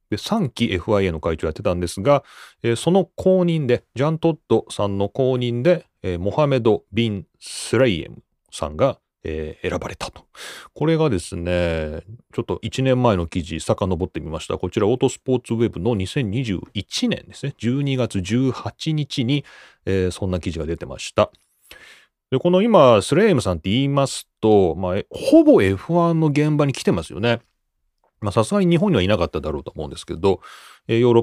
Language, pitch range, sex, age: Japanese, 100-150 Hz, male, 30-49